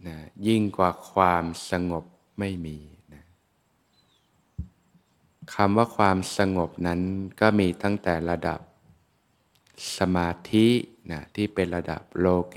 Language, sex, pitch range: Thai, male, 85-100 Hz